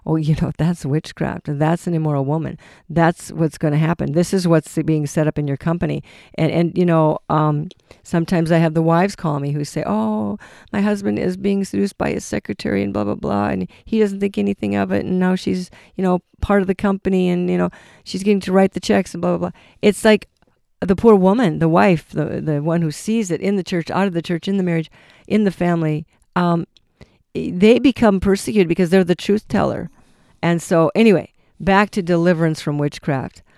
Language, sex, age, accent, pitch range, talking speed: English, female, 50-69, American, 155-190 Hz, 220 wpm